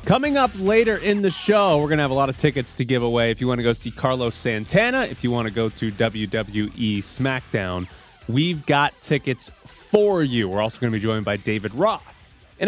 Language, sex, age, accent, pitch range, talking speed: English, male, 20-39, American, 110-155 Hz, 225 wpm